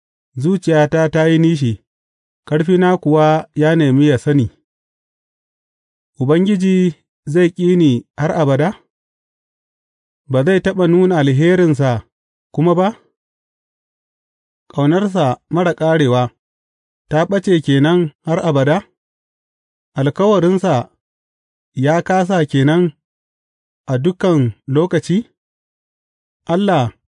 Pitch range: 125-175 Hz